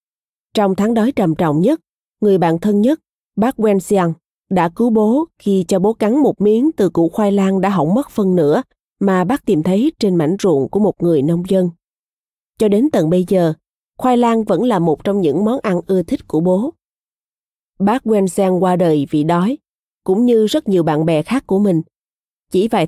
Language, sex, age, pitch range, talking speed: Vietnamese, female, 20-39, 180-225 Hz, 200 wpm